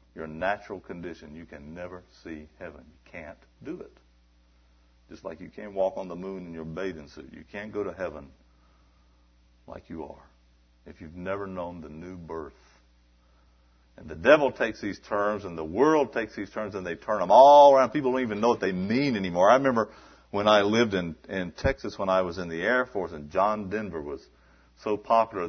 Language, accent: English, American